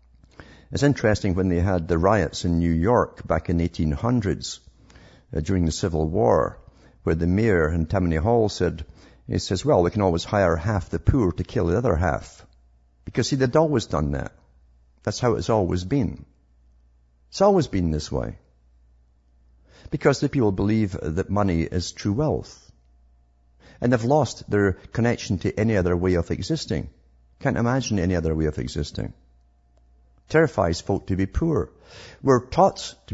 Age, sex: 50-69, male